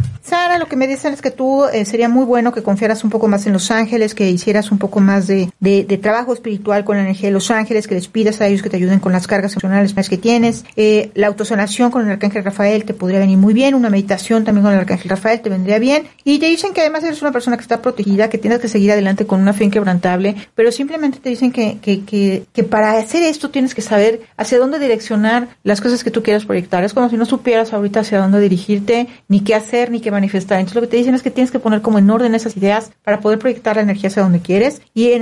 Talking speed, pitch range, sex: 265 wpm, 200-245 Hz, female